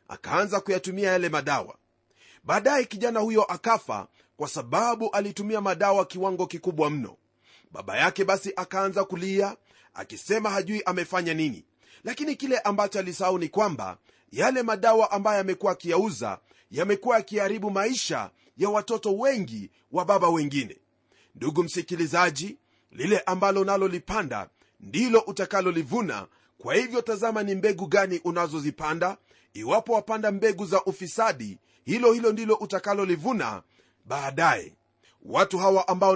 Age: 40-59